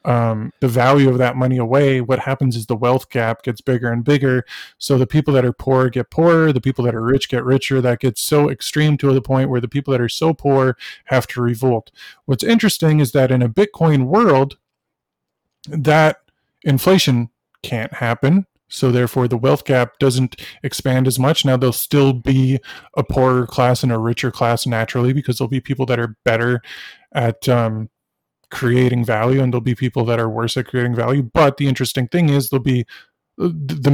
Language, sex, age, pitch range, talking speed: English, male, 20-39, 125-145 Hz, 195 wpm